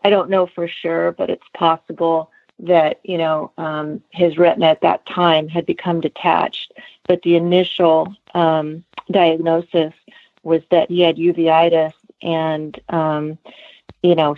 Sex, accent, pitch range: female, American, 160-175 Hz